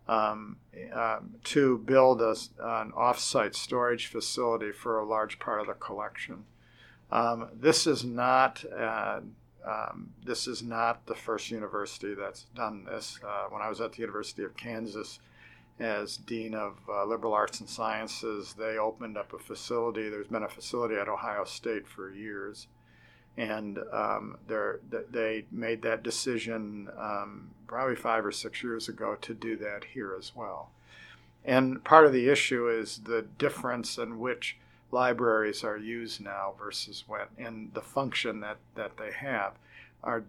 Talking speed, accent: 155 wpm, American